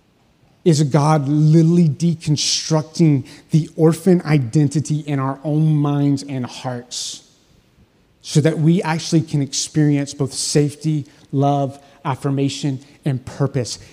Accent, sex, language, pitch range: American, male, English, 140-170 Hz